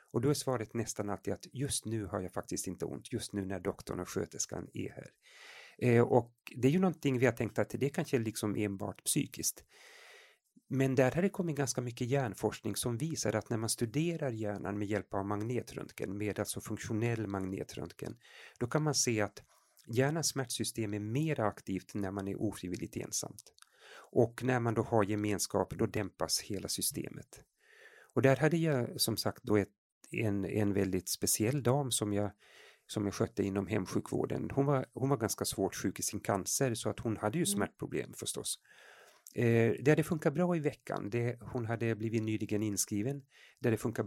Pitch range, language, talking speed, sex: 105-130 Hz, Swedish, 190 wpm, male